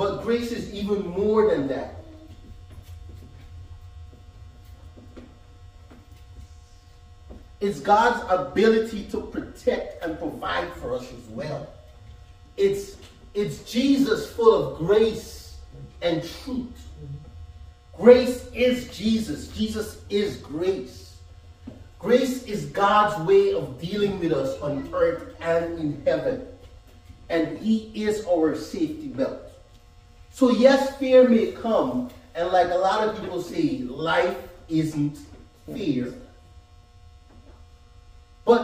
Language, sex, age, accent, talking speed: English, male, 40-59, American, 105 wpm